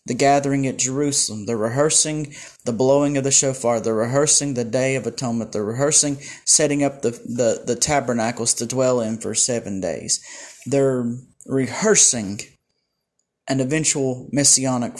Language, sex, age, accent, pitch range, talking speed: English, male, 30-49, American, 125-145 Hz, 145 wpm